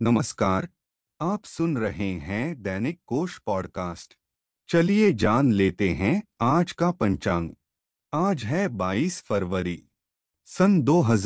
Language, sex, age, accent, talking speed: Hindi, male, 30-49, native, 105 wpm